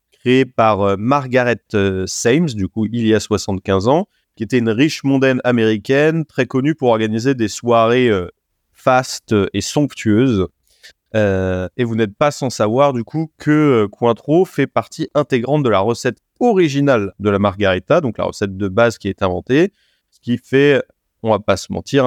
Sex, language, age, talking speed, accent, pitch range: male, French, 30-49, 175 wpm, French, 110-140 Hz